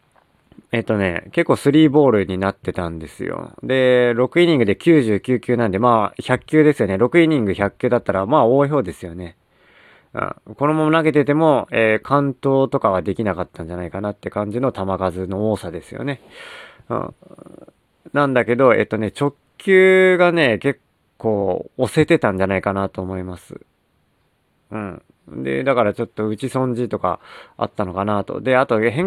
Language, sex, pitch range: Japanese, male, 100-145 Hz